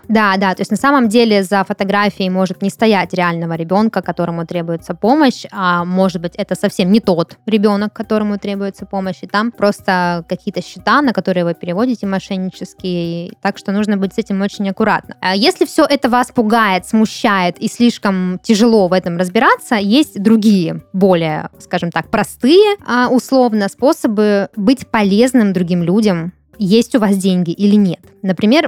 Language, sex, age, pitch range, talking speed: Russian, female, 20-39, 185-230 Hz, 160 wpm